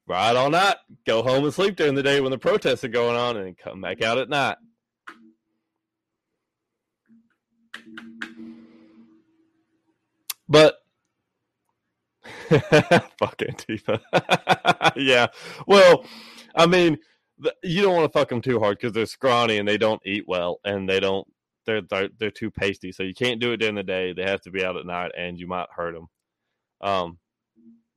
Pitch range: 110-145 Hz